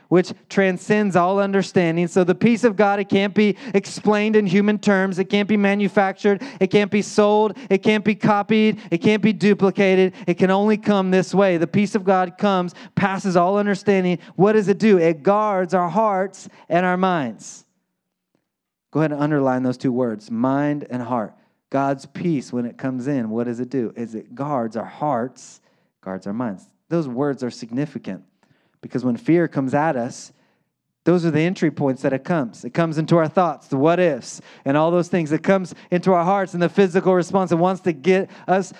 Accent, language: American, English